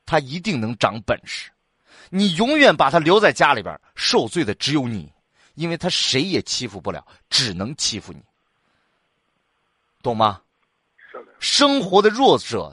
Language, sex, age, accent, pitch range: Chinese, male, 30-49, native, 135-225 Hz